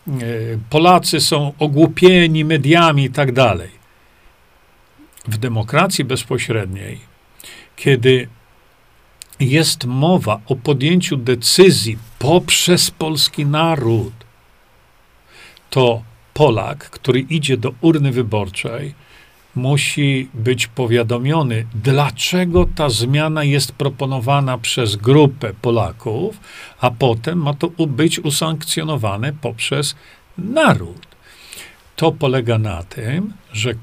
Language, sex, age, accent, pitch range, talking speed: Polish, male, 50-69, native, 115-160 Hz, 90 wpm